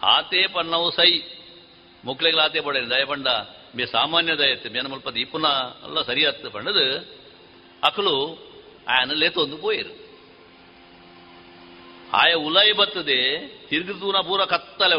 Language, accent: Kannada, native